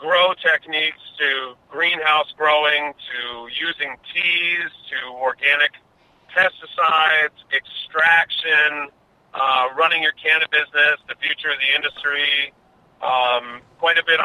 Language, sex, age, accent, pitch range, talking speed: English, male, 50-69, American, 135-155 Hz, 115 wpm